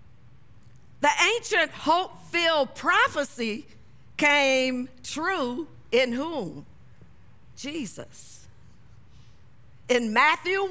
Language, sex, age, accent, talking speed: English, female, 50-69, American, 60 wpm